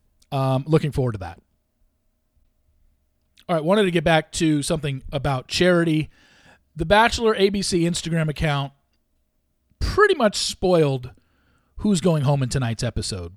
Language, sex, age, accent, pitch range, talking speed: English, male, 40-59, American, 120-160 Hz, 130 wpm